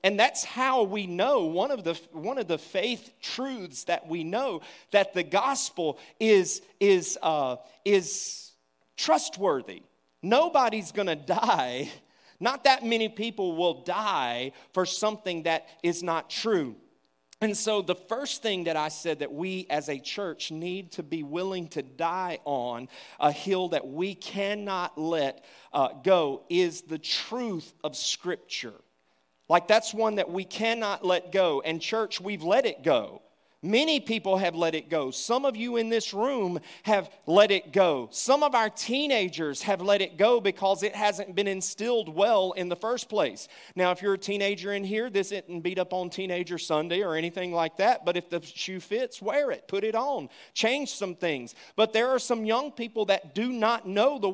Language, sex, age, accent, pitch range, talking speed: English, male, 40-59, American, 175-220 Hz, 180 wpm